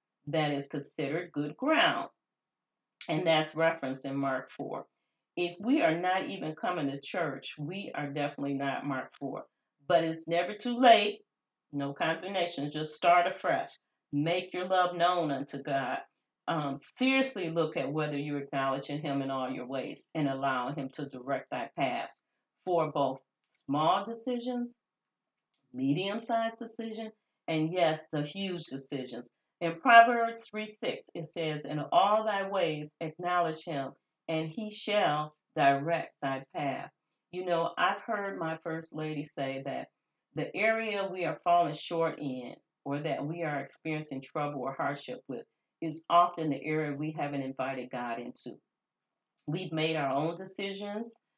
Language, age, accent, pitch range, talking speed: English, 40-59, American, 145-185 Hz, 150 wpm